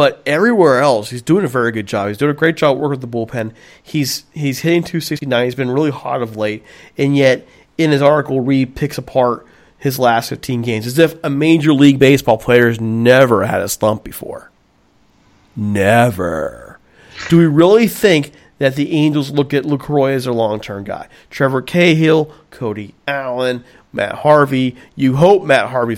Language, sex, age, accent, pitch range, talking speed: English, male, 40-59, American, 115-160 Hz, 180 wpm